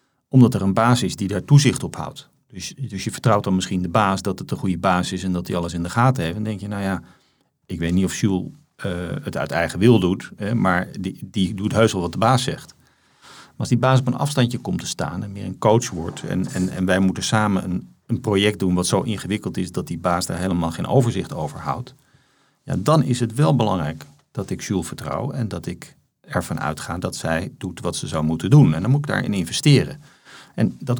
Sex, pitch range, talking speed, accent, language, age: male, 90-125 Hz, 250 wpm, Dutch, Dutch, 40-59